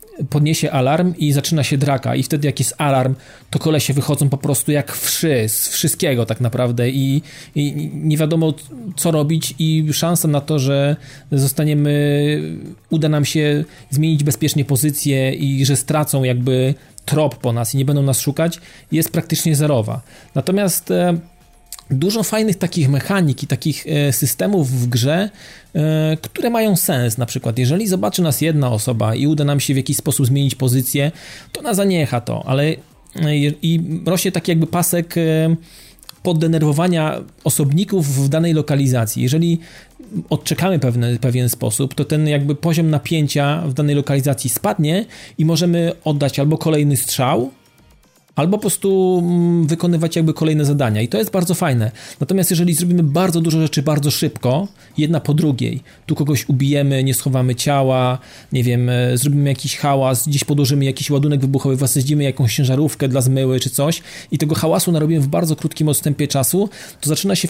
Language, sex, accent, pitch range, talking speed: Polish, male, native, 135-160 Hz, 160 wpm